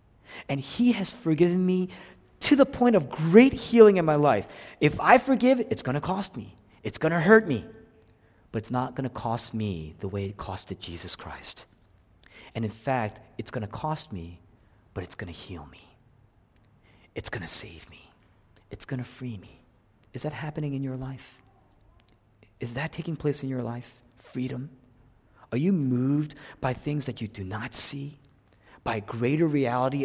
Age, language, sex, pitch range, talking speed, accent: 40-59, English, male, 110-165 Hz, 180 wpm, American